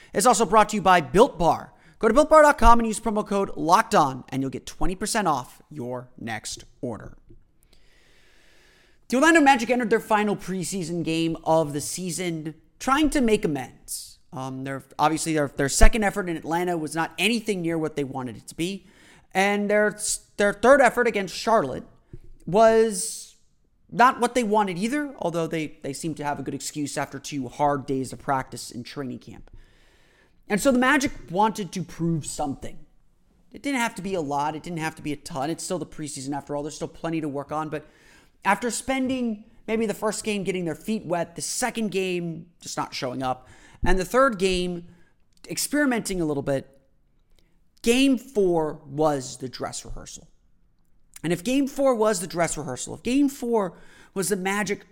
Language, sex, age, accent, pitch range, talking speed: English, male, 30-49, American, 150-220 Hz, 185 wpm